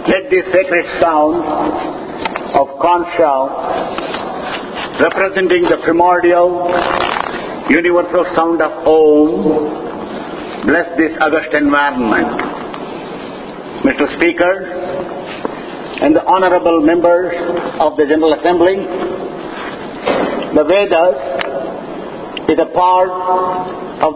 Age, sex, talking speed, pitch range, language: 50-69, male, 80 wpm, 165-190 Hz, English